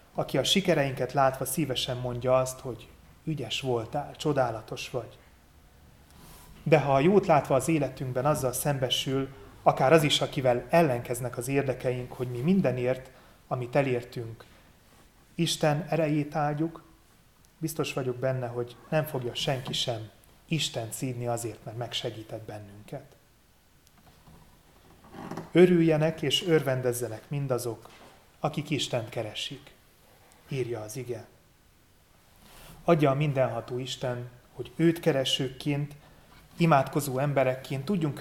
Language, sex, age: Hungarian, male, 30-49